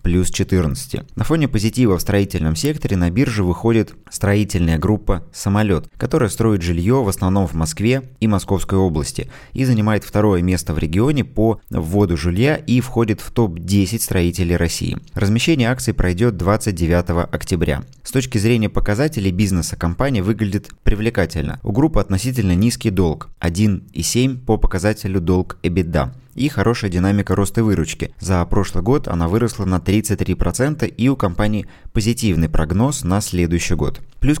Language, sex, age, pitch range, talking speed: Russian, male, 20-39, 90-115 Hz, 140 wpm